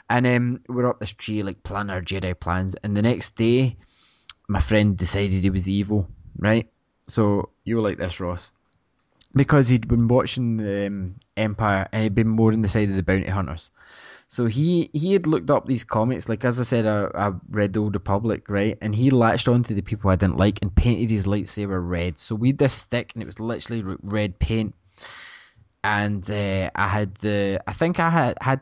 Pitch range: 100-120 Hz